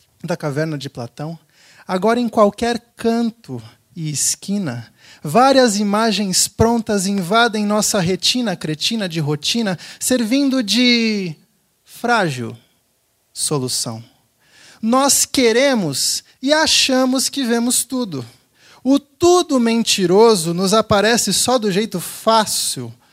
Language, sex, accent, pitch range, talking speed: Portuguese, male, Brazilian, 170-255 Hz, 100 wpm